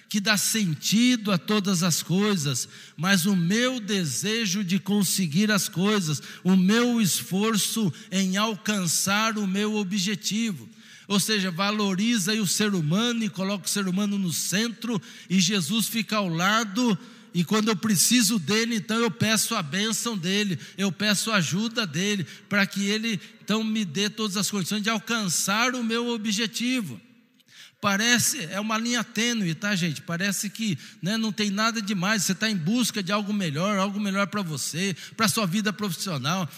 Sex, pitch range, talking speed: male, 190-220 Hz, 165 wpm